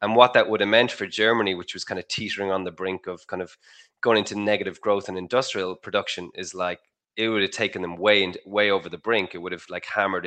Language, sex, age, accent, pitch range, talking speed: English, male, 20-39, Irish, 95-110 Hz, 265 wpm